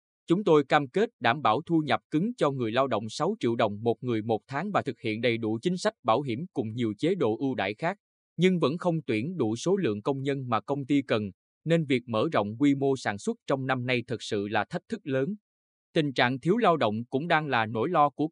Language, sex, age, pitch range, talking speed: Vietnamese, male, 20-39, 115-155 Hz, 250 wpm